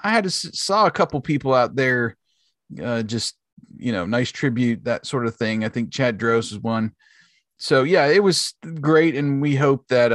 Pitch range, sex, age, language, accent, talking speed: 105-135 Hz, male, 40-59, English, American, 200 wpm